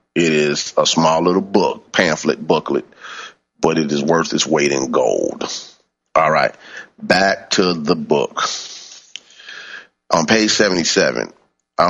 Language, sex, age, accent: English, male, 40-59, American